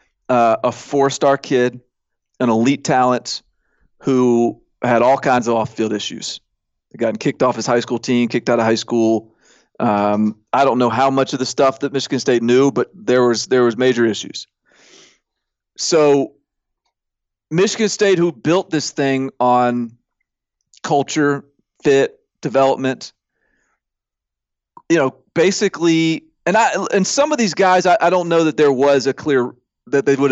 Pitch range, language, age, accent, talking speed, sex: 120-140 Hz, English, 40-59, American, 155 wpm, male